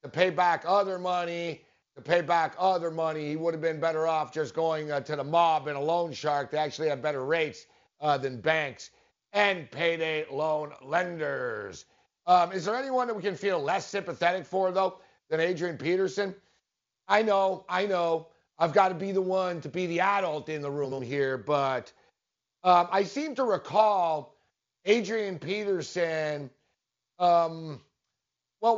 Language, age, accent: English, 50-69, American